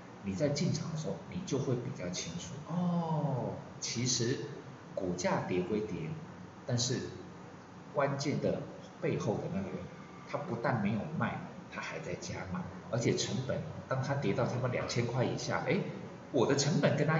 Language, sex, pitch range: Chinese, male, 115-160 Hz